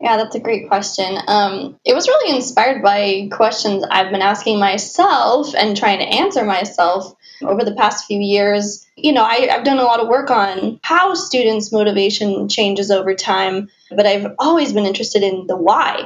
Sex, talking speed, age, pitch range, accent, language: female, 185 wpm, 20-39, 195-270 Hz, American, English